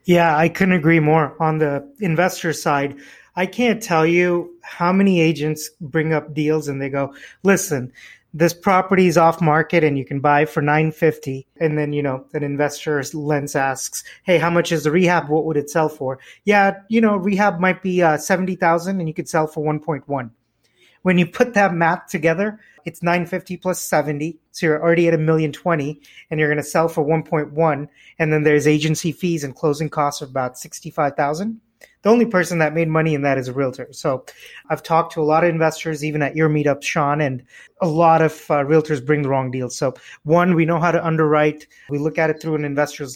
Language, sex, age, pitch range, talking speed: English, male, 30-49, 145-170 Hz, 220 wpm